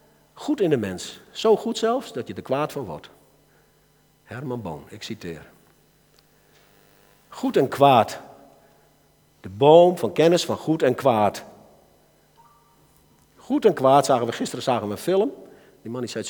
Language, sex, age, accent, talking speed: Dutch, male, 50-69, Dutch, 160 wpm